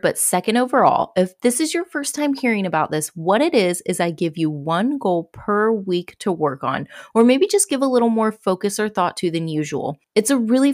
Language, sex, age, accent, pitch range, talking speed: English, female, 30-49, American, 170-235 Hz, 235 wpm